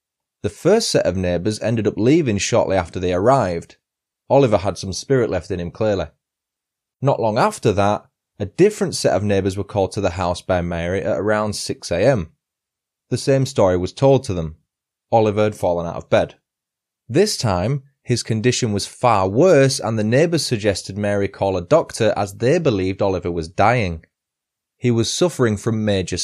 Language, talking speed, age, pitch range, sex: English, 180 wpm, 20-39, 95-130 Hz, male